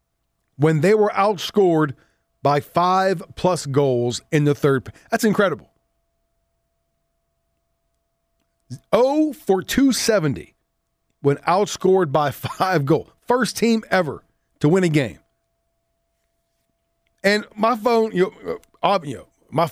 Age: 40-59